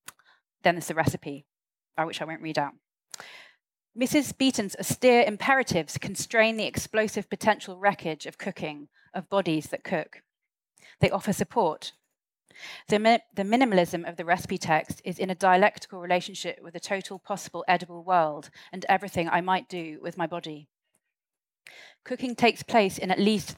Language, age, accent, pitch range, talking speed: English, 30-49, British, 165-200 Hz, 150 wpm